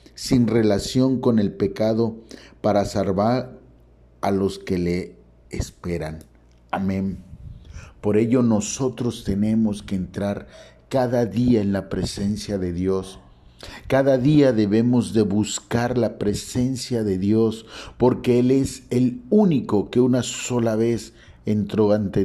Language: Spanish